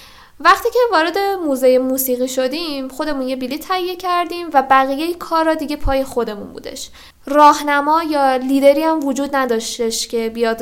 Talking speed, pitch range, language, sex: 155 wpm, 245-295 Hz, Persian, female